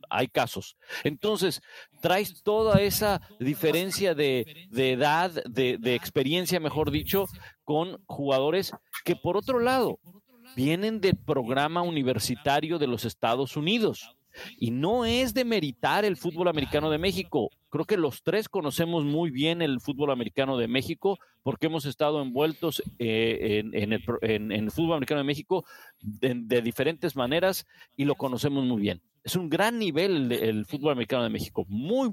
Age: 50-69